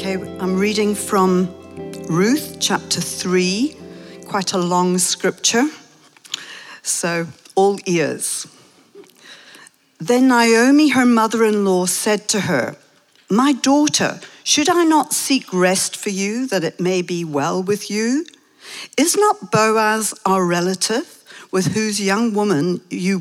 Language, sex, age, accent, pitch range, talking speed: English, female, 60-79, British, 180-235 Hz, 120 wpm